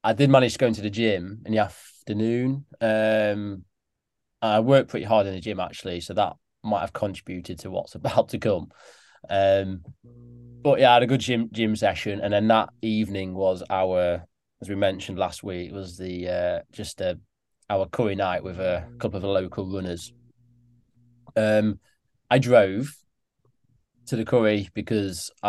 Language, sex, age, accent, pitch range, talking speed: English, male, 20-39, British, 95-115 Hz, 170 wpm